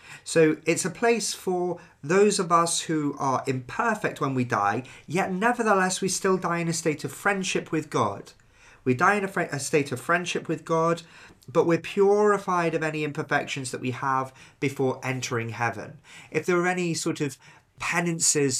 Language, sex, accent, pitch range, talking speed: English, male, British, 125-165 Hz, 180 wpm